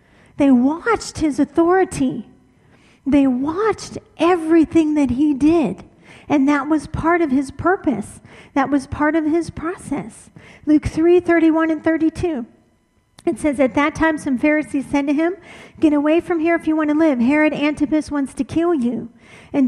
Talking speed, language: 165 wpm, English